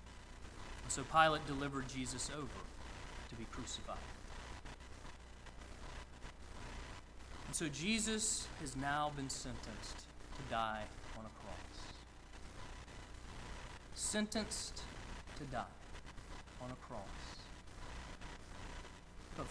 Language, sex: English, male